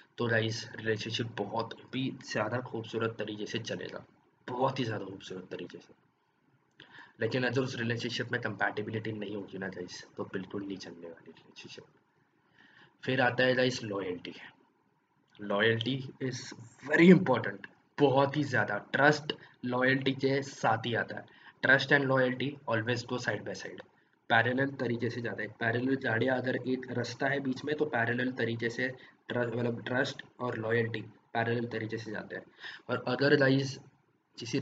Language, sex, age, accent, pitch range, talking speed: Hindi, male, 20-39, native, 110-130 Hz, 90 wpm